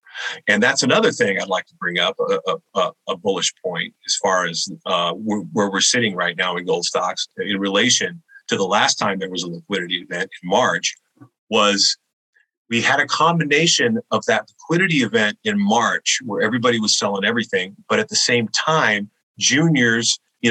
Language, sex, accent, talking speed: English, male, American, 180 wpm